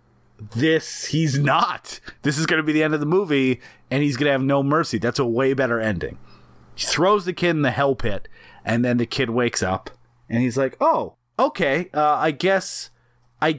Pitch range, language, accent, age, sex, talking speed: 130-165 Hz, English, American, 30-49, male, 205 wpm